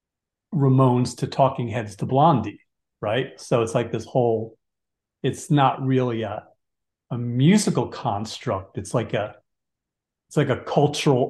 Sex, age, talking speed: male, 40-59, 140 wpm